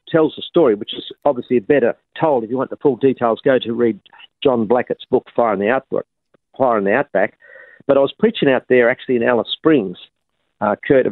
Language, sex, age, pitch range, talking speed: English, male, 50-69, 110-130 Hz, 205 wpm